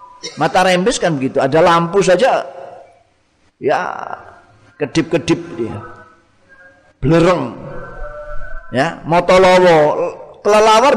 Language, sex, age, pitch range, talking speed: Indonesian, male, 40-59, 160-210 Hz, 75 wpm